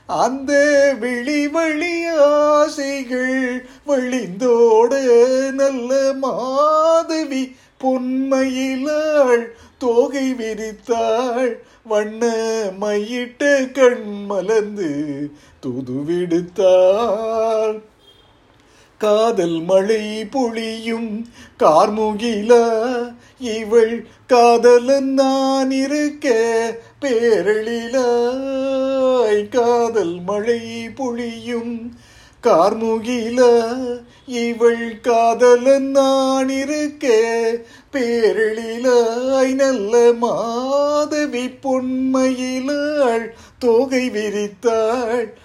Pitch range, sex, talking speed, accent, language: 220-265 Hz, male, 45 wpm, native, Tamil